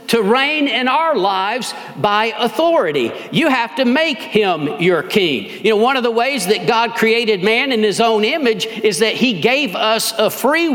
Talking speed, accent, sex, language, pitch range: 195 wpm, American, male, English, 190-265 Hz